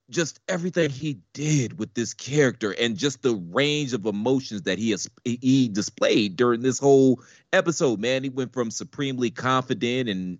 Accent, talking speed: American, 165 wpm